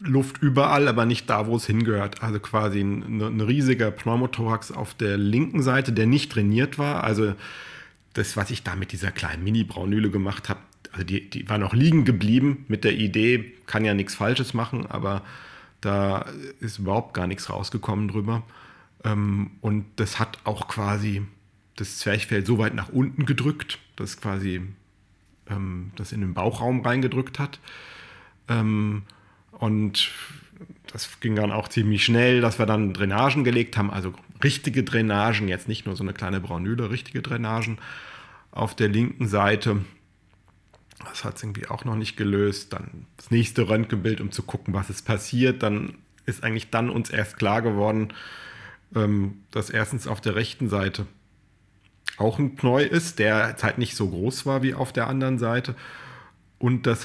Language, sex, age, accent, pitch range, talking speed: German, male, 40-59, German, 100-120 Hz, 160 wpm